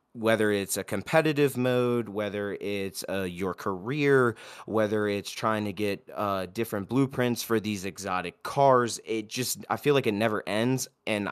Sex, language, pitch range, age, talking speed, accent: male, English, 100-120 Hz, 20-39, 165 wpm, American